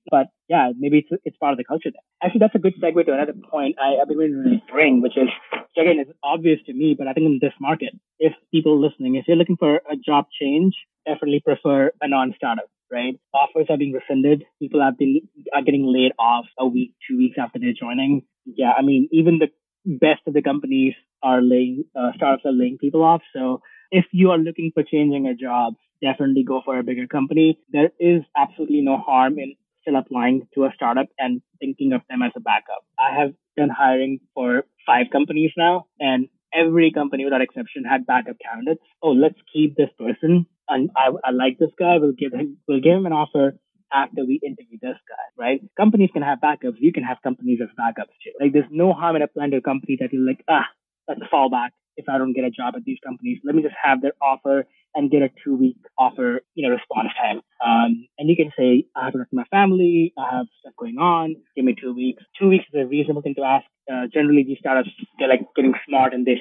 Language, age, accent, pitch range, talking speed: English, 20-39, Indian, 135-170 Hz, 225 wpm